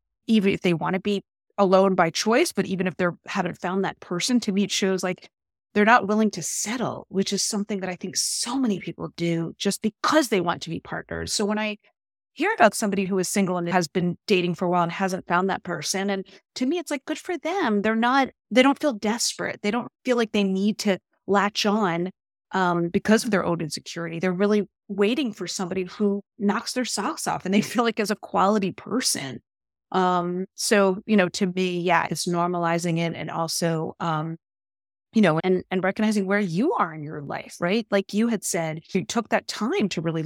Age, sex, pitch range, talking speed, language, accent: 30-49, female, 175-210 Hz, 220 wpm, English, American